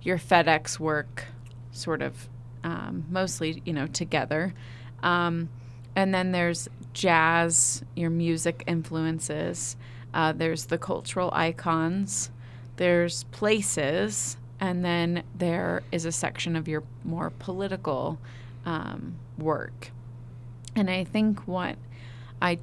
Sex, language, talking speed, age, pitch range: female, English, 110 wpm, 30-49, 120-175 Hz